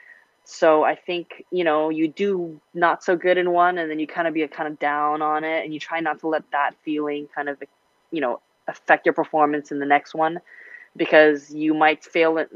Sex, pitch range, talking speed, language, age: female, 145-170 Hz, 230 wpm, English, 20-39